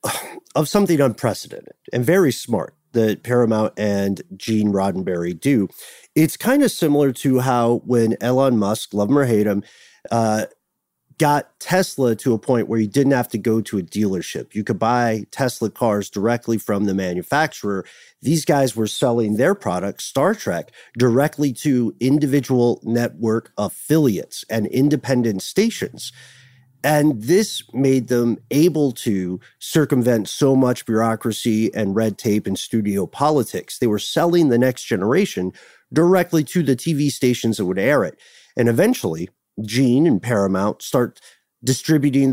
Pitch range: 110-140 Hz